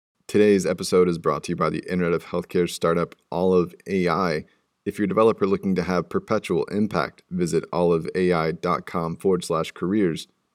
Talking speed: 160 wpm